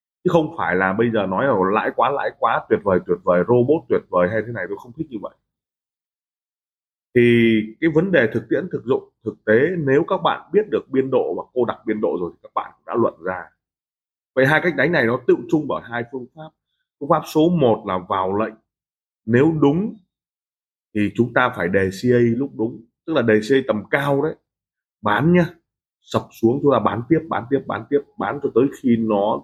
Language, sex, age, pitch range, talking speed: Vietnamese, male, 20-39, 110-155 Hz, 225 wpm